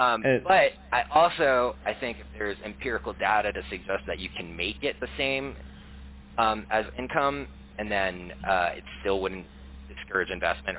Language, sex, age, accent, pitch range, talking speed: English, male, 30-49, American, 70-95 Hz, 165 wpm